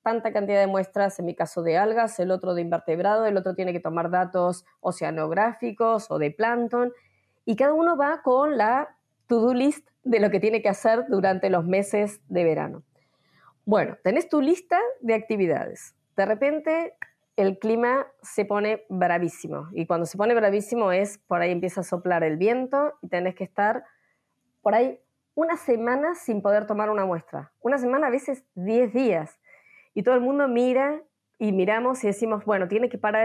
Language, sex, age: Spanish, female, 20-39